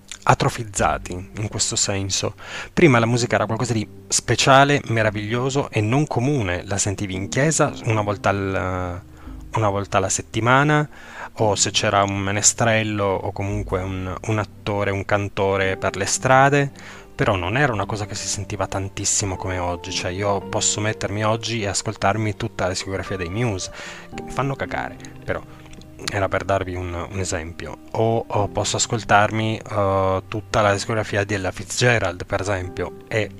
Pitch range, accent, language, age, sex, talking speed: 95-120 Hz, native, Italian, 20-39, male, 155 wpm